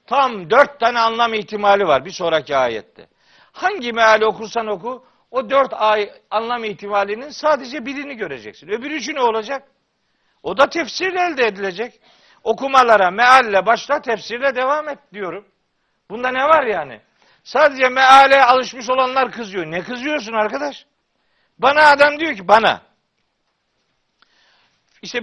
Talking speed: 130 wpm